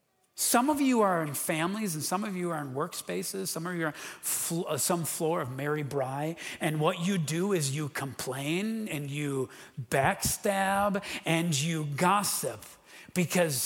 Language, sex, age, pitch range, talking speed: English, male, 40-59, 145-180 Hz, 170 wpm